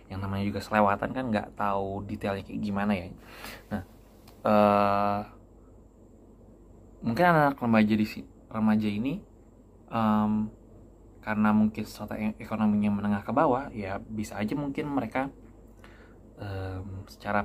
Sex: male